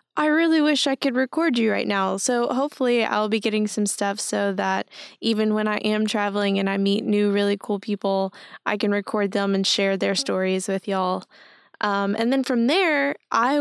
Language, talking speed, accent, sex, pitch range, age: English, 200 wpm, American, female, 200-245 Hz, 10-29